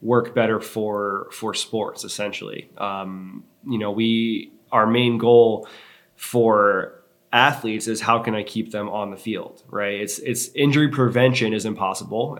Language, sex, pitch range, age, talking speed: English, male, 105-120 Hz, 20-39, 150 wpm